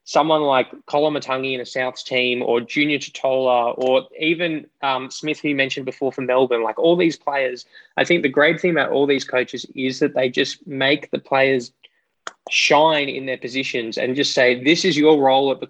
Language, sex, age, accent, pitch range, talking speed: English, male, 10-29, Australian, 130-155 Hz, 205 wpm